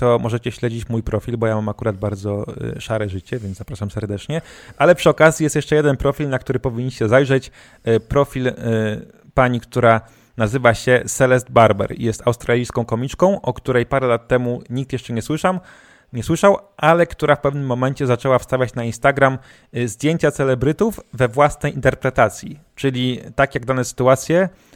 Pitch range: 120-140 Hz